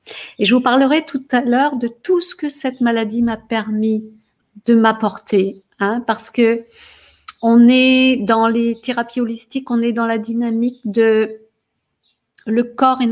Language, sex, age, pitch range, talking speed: French, female, 50-69, 215-245 Hz, 155 wpm